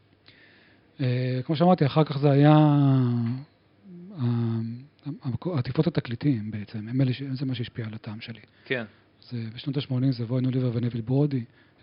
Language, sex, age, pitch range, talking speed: Hebrew, male, 40-59, 120-140 Hz, 115 wpm